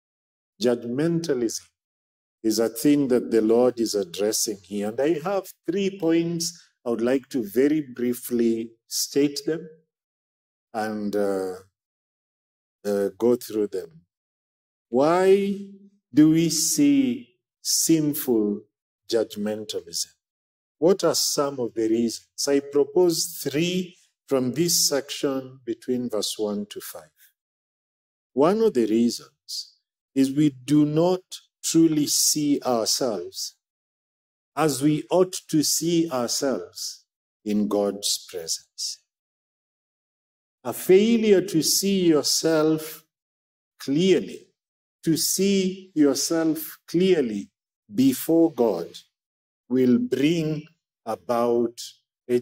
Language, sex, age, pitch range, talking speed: English, male, 50-69, 115-170 Hz, 100 wpm